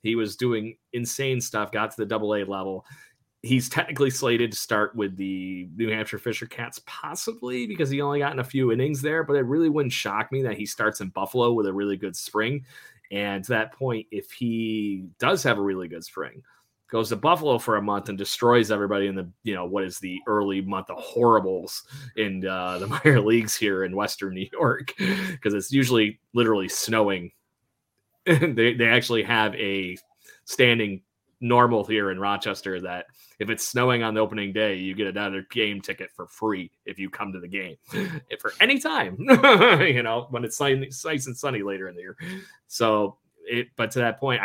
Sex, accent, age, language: male, American, 30-49, English